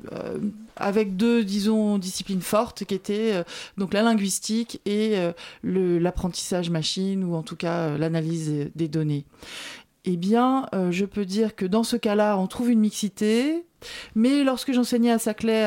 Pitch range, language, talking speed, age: 175-220 Hz, French, 170 wpm, 40-59